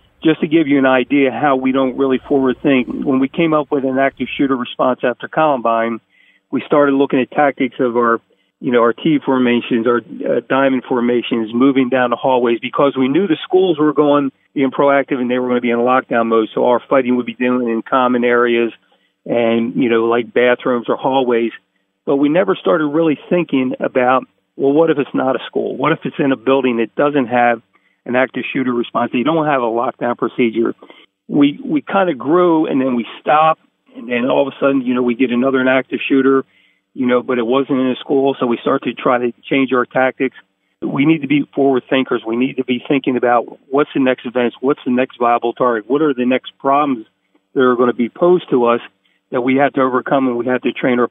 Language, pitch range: English, 120-140 Hz